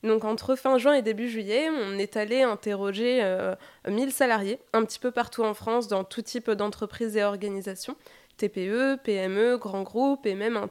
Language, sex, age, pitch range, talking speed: French, female, 20-39, 210-250 Hz, 185 wpm